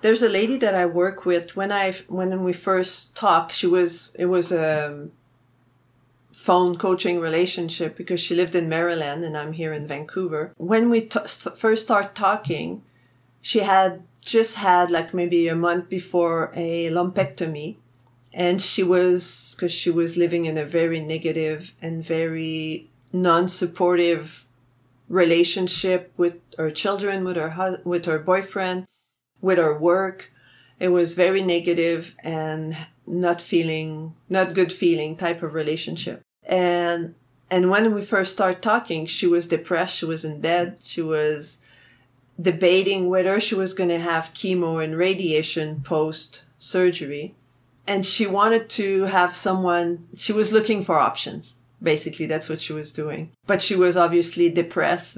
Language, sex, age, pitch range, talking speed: English, female, 40-59, 160-185 Hz, 145 wpm